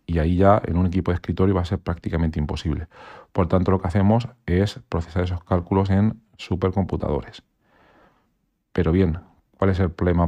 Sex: male